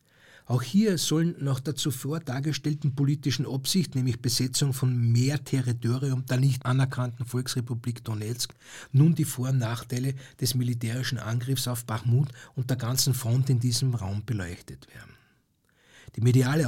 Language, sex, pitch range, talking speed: German, male, 120-150 Hz, 145 wpm